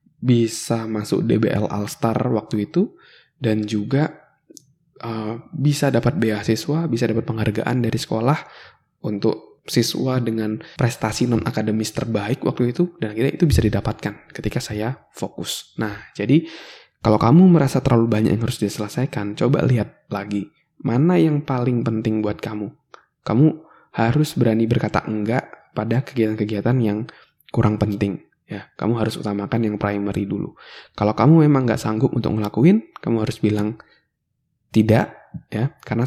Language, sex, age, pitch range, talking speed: Indonesian, male, 20-39, 105-130 Hz, 135 wpm